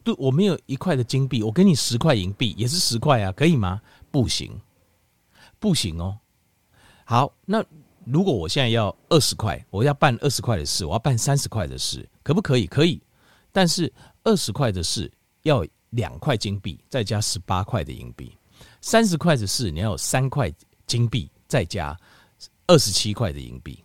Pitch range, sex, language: 100-145 Hz, male, Chinese